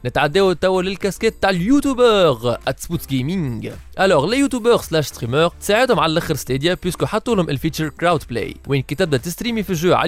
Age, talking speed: 20-39, 130 wpm